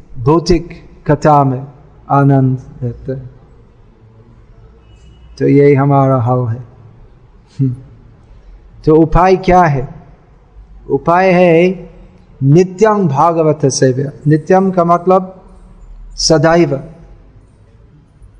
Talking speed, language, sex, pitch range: 75 wpm, Hindi, male, 120-170 Hz